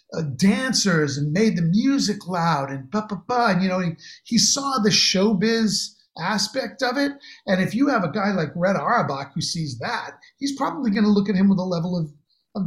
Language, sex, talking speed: English, male, 220 wpm